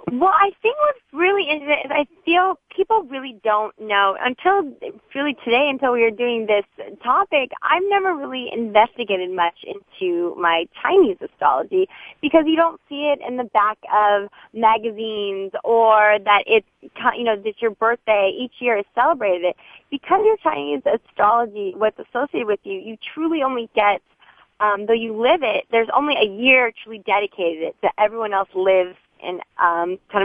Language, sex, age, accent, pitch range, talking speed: English, female, 20-39, American, 200-285 Hz, 165 wpm